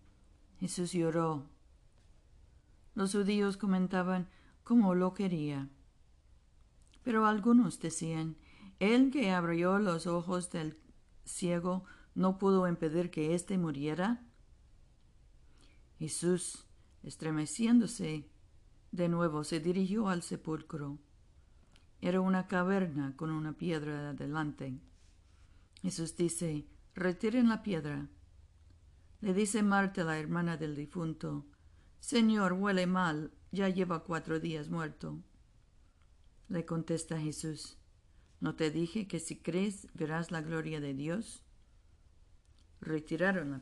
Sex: female